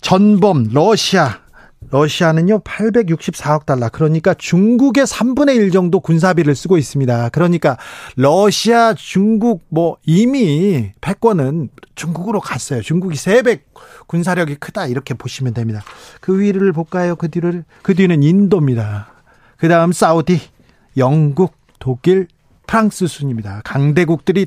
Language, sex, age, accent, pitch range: Korean, male, 40-59, native, 140-190 Hz